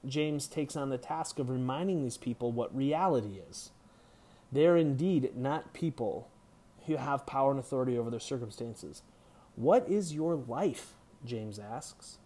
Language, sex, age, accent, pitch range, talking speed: English, male, 30-49, American, 125-160 Hz, 145 wpm